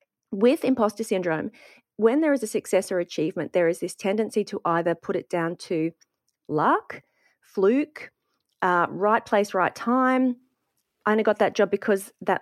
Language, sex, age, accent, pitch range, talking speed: English, female, 40-59, Australian, 175-220 Hz, 165 wpm